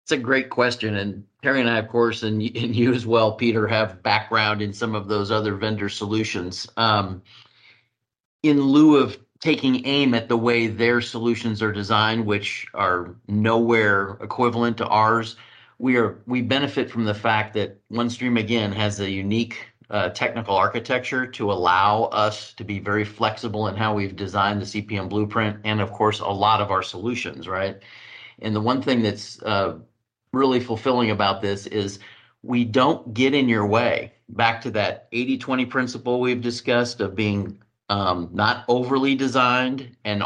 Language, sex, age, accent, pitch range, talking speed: English, male, 40-59, American, 105-120 Hz, 170 wpm